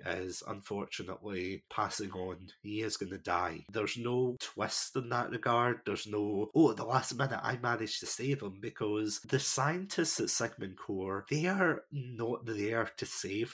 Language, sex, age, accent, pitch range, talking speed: English, male, 30-49, British, 95-125 Hz, 175 wpm